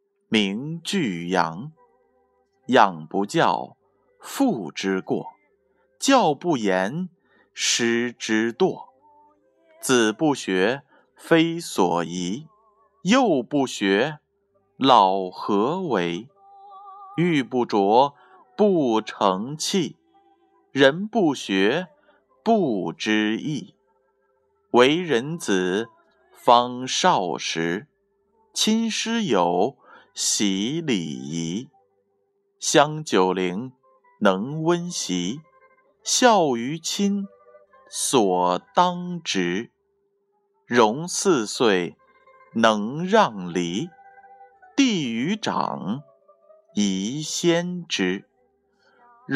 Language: Chinese